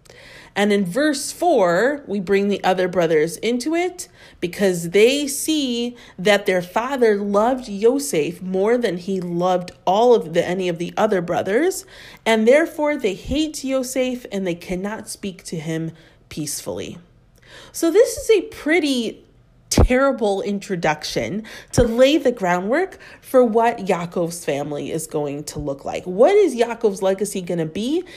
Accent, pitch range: American, 185-275 Hz